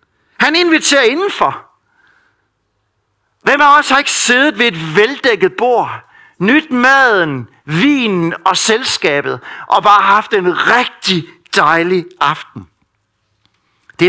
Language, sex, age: Danish, male, 60-79